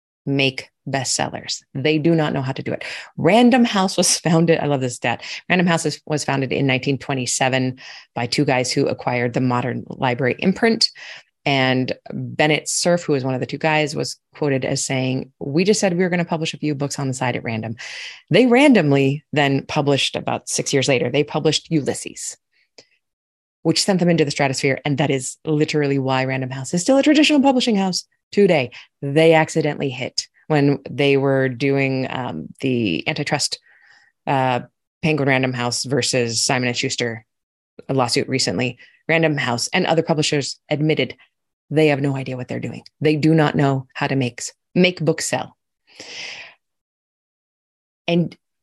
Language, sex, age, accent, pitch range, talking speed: English, female, 30-49, American, 130-170 Hz, 170 wpm